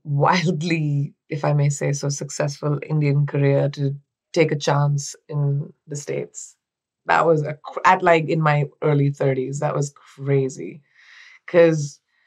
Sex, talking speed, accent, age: female, 135 wpm, Indian, 20-39